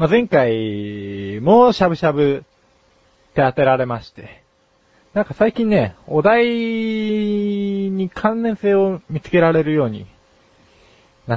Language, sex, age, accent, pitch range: Japanese, male, 20-39, native, 110-170 Hz